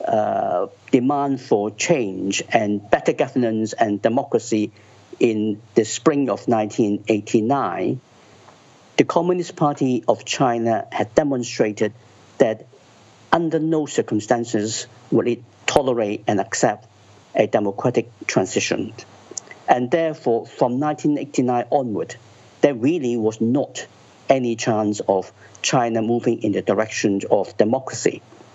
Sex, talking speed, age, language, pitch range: male, 110 wpm, 50-69, English, 110-135 Hz